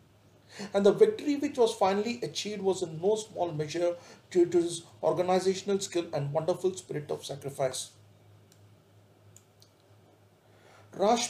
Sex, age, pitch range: male, 40-59, 130-185 Hz